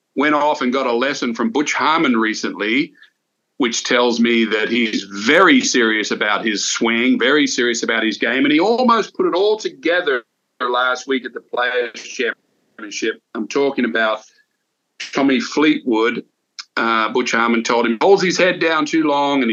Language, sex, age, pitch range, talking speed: English, male, 50-69, 125-180 Hz, 170 wpm